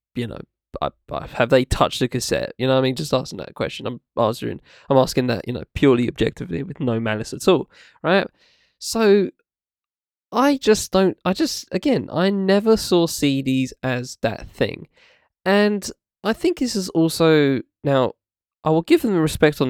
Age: 10-29